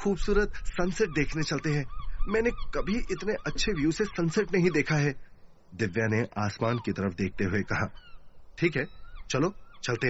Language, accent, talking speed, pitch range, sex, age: Hindi, native, 160 wpm, 100-140 Hz, male, 30-49